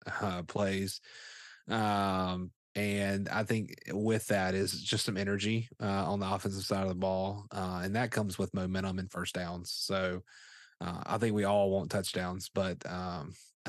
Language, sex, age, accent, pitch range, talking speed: English, male, 30-49, American, 90-110 Hz, 170 wpm